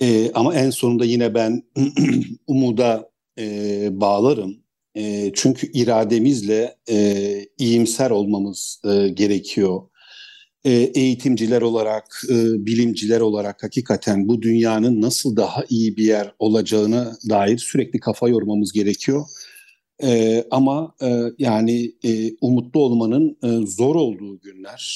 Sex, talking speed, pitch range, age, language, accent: male, 115 wpm, 110-130 Hz, 60-79, Turkish, native